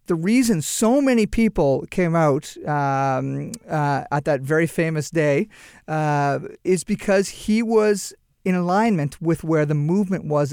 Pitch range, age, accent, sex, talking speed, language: 145-185 Hz, 40-59, American, male, 150 wpm, English